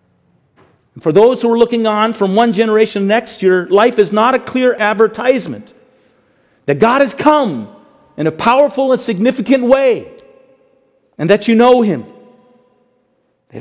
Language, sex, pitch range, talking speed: English, male, 190-240 Hz, 155 wpm